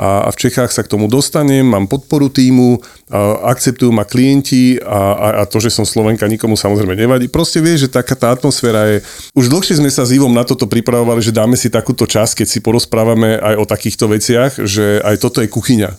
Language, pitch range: Slovak, 105-130 Hz